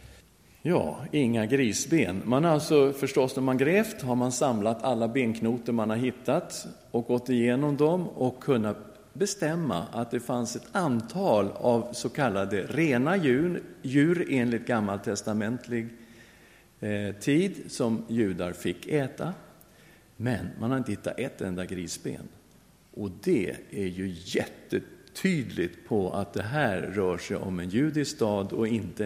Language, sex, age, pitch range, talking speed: English, male, 50-69, 105-140 Hz, 140 wpm